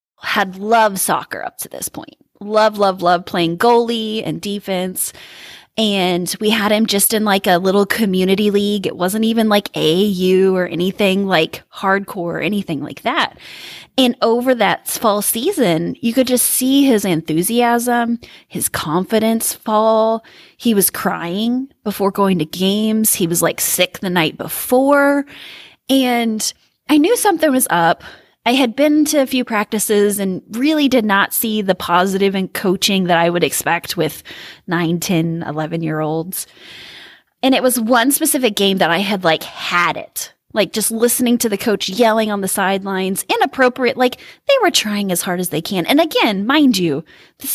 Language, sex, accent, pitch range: English, female, American, 185-240 Hz